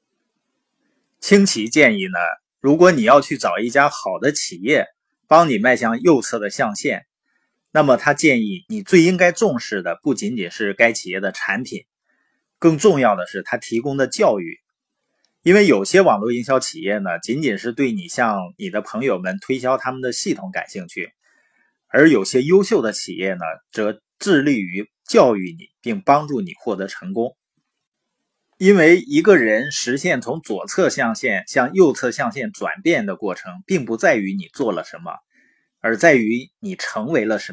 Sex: male